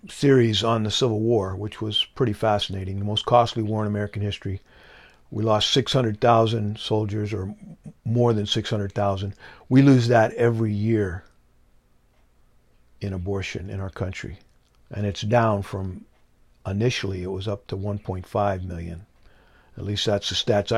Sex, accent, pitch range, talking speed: male, American, 95-120 Hz, 145 wpm